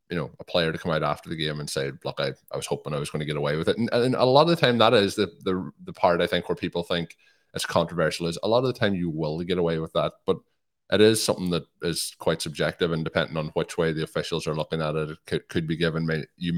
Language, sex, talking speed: English, male, 300 wpm